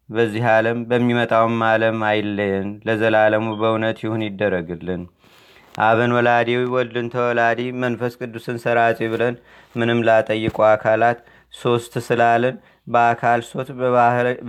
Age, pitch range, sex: 30-49, 110-120 Hz, male